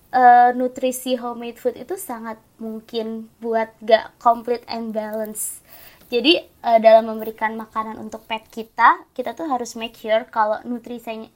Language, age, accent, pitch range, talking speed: Indonesian, 20-39, native, 220-255 Hz, 145 wpm